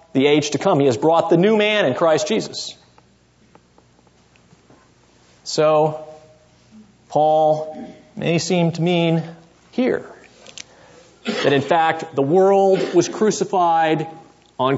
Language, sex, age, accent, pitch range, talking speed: English, male, 30-49, American, 130-195 Hz, 115 wpm